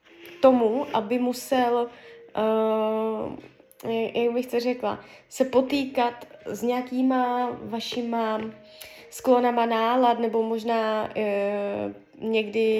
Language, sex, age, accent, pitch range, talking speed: Czech, female, 20-39, native, 225-260 Hz, 80 wpm